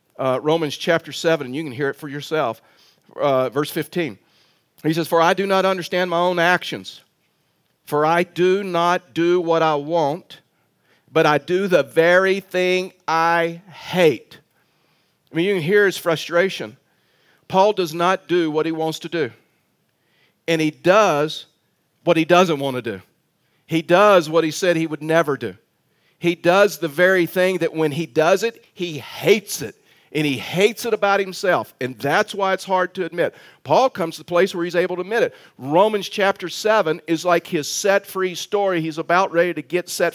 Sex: male